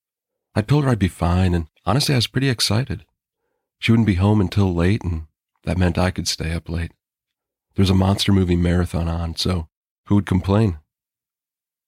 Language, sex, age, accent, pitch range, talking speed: English, male, 40-59, American, 85-115 Hz, 185 wpm